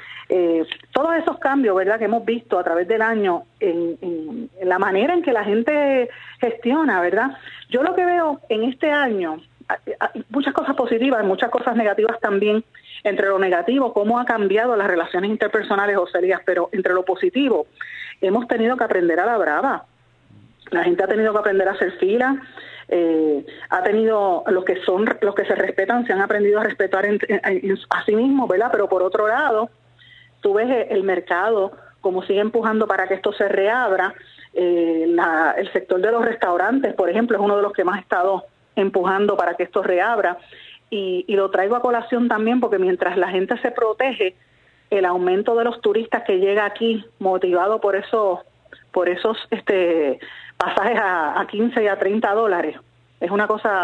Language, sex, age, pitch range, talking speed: Spanish, female, 30-49, 190-235 Hz, 185 wpm